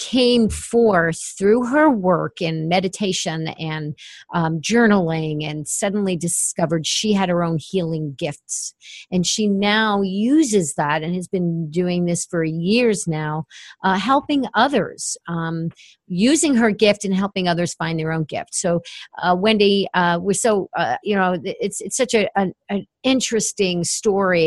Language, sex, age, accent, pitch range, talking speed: English, female, 50-69, American, 170-215 Hz, 155 wpm